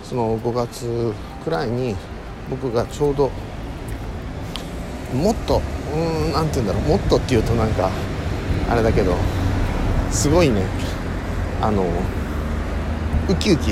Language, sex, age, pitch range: Japanese, male, 50-69, 85-115 Hz